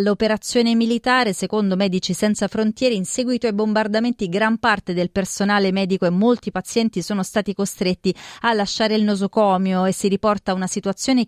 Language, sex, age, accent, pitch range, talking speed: Italian, female, 30-49, native, 160-205 Hz, 160 wpm